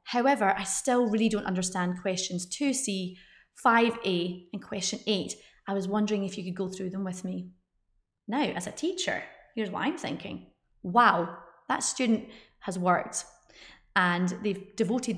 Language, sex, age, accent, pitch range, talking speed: English, female, 30-49, British, 180-235 Hz, 155 wpm